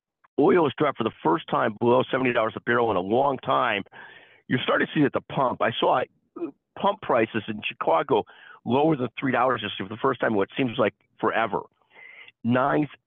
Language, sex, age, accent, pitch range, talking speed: English, male, 50-69, American, 110-135 Hz, 195 wpm